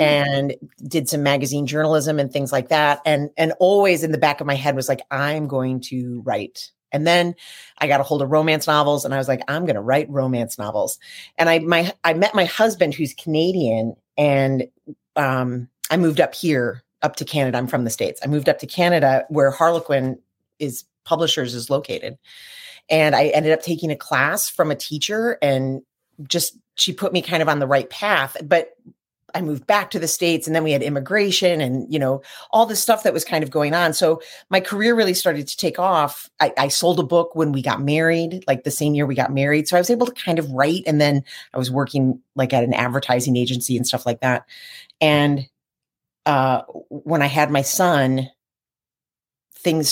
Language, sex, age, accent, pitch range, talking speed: English, female, 30-49, American, 135-165 Hz, 210 wpm